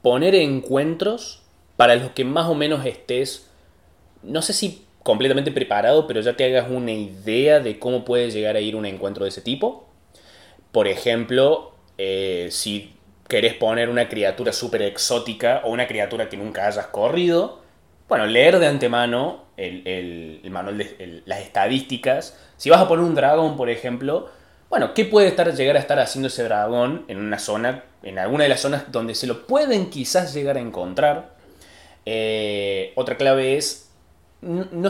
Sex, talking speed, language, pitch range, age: male, 170 wpm, Spanish, 105-155 Hz, 20-39